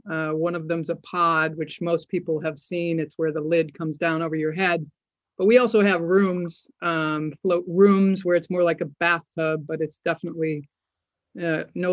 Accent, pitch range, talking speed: American, 155-180 Hz, 195 wpm